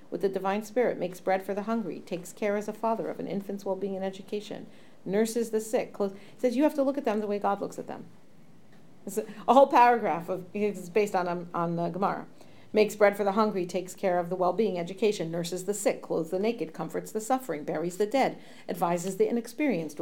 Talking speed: 220 wpm